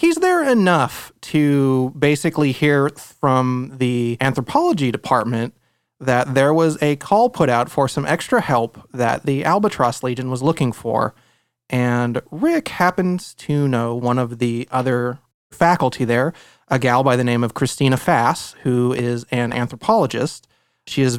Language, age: English, 30-49